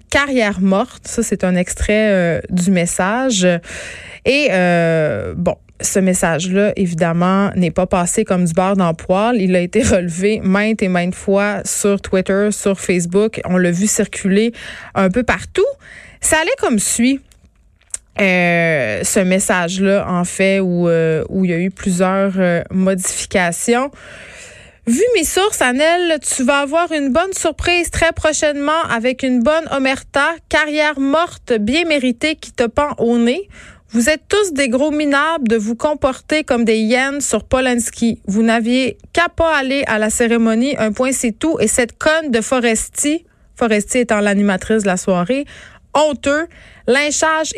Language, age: French, 20-39